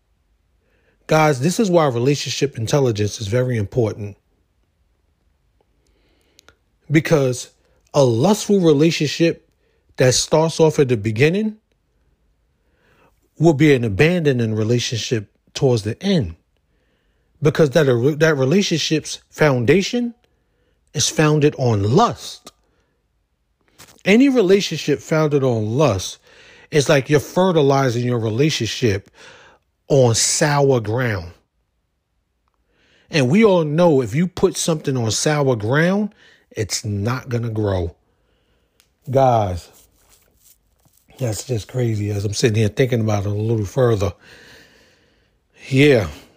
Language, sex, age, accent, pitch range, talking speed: English, male, 40-59, American, 105-150 Hz, 105 wpm